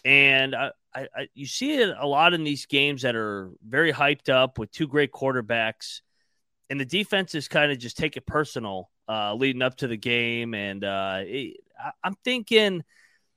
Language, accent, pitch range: English, American, 120-160 Hz